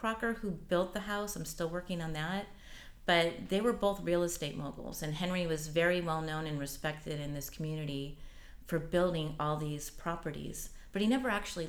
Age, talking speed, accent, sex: 30-49, 190 wpm, American, female